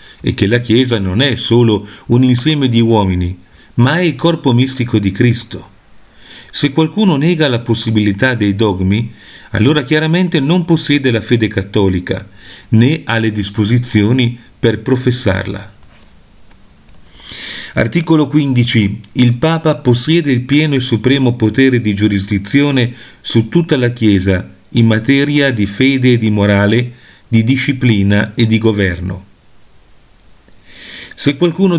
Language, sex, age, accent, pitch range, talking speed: Italian, male, 40-59, native, 100-135 Hz, 130 wpm